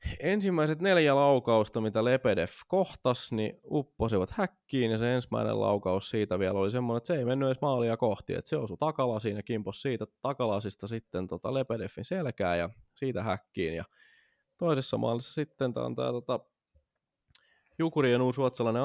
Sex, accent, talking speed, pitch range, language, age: male, native, 155 wpm, 100-130 Hz, Finnish, 20-39